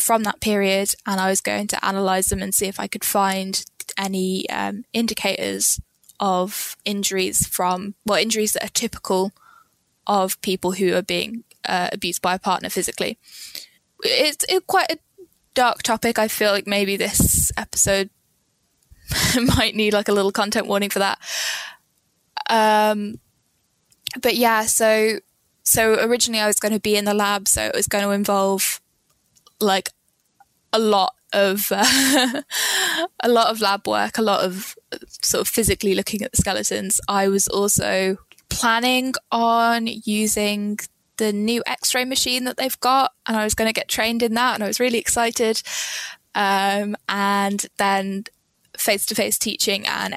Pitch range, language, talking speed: 195-230 Hz, English, 160 wpm